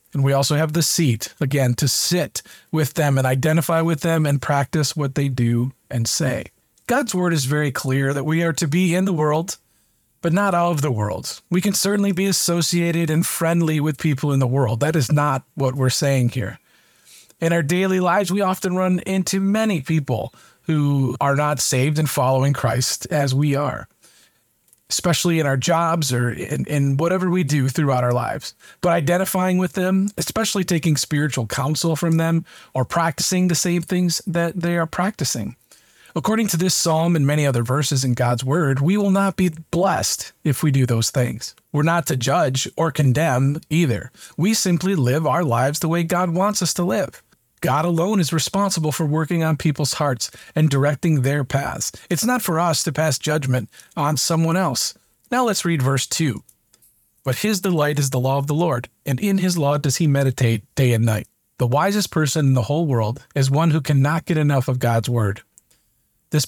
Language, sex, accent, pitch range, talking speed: English, male, American, 135-175 Hz, 195 wpm